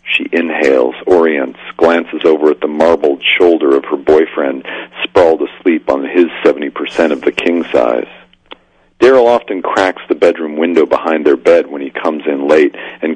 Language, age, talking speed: English, 40-59, 165 wpm